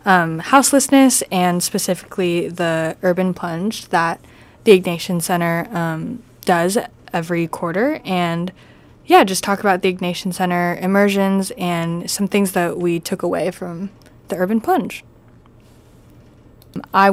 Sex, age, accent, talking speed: female, 20-39, American, 125 wpm